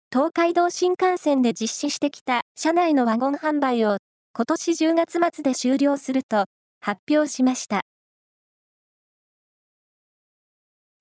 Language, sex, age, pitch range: Japanese, female, 20-39, 250-320 Hz